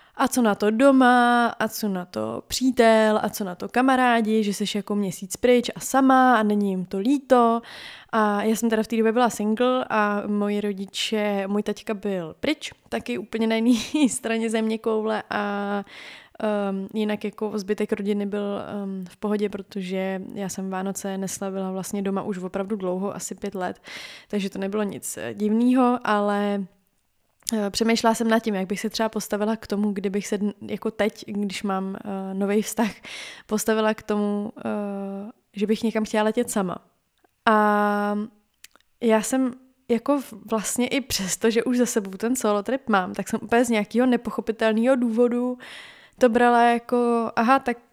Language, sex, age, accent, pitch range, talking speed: Czech, female, 20-39, native, 205-240 Hz, 170 wpm